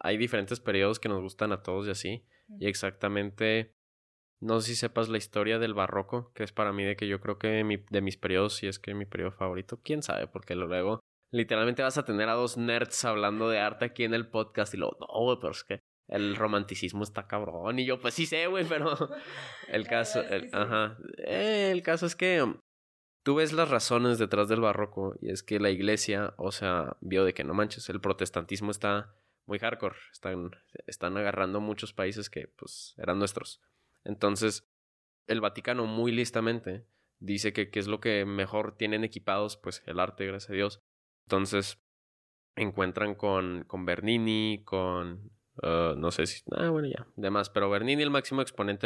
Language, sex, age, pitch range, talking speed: Spanish, male, 20-39, 95-115 Hz, 190 wpm